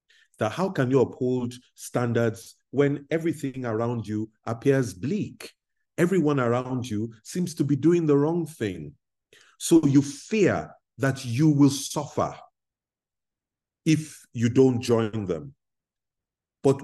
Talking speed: 125 wpm